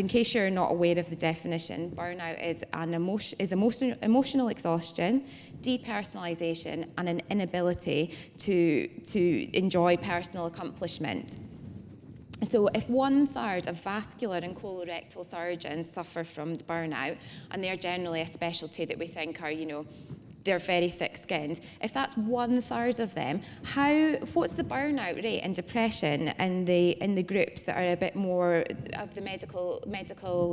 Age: 20-39